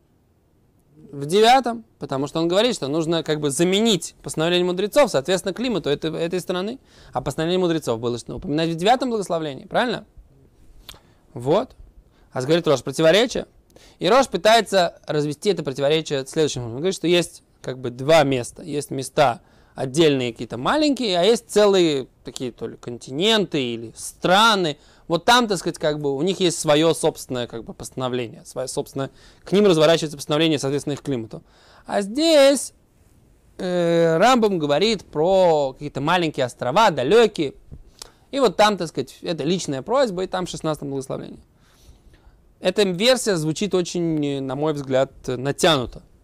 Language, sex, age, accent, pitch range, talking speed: Russian, male, 20-39, native, 135-185 Hz, 150 wpm